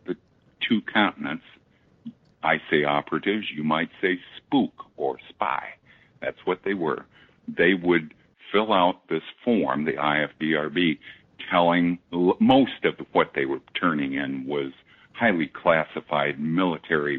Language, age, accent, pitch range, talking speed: English, 60-79, American, 75-100 Hz, 120 wpm